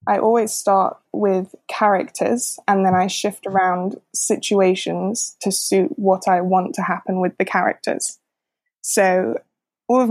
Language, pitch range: English, 195-225 Hz